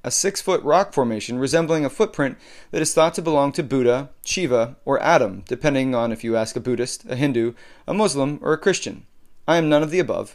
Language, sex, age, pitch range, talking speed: English, male, 30-49, 125-160 Hz, 215 wpm